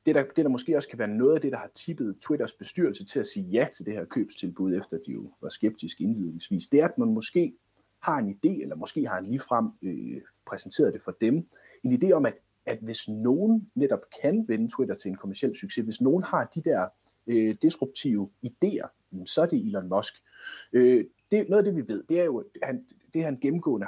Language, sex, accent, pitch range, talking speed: Danish, male, native, 100-165 Hz, 230 wpm